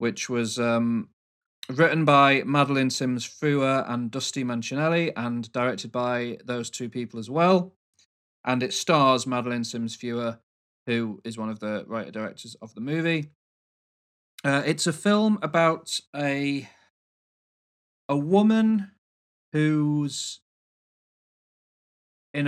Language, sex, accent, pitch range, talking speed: English, male, British, 115-145 Hz, 110 wpm